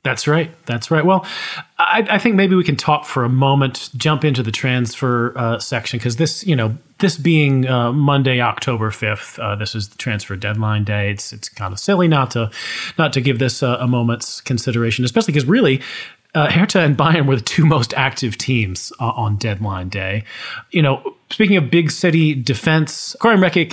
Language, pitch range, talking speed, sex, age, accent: English, 110-150 Hz, 200 wpm, male, 30-49, American